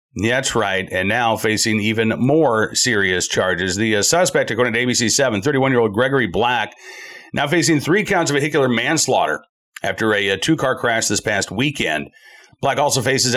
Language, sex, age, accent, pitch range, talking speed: English, male, 40-59, American, 115-155 Hz, 165 wpm